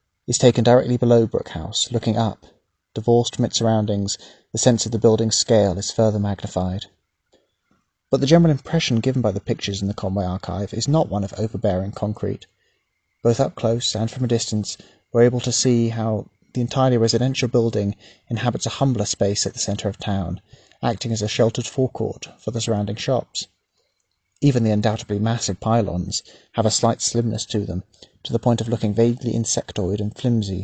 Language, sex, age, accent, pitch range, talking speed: English, male, 30-49, British, 100-120 Hz, 180 wpm